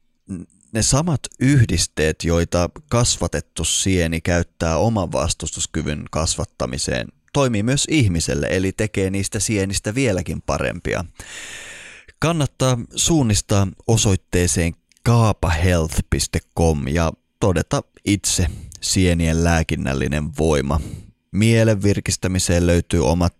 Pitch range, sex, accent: 80-100 Hz, male, native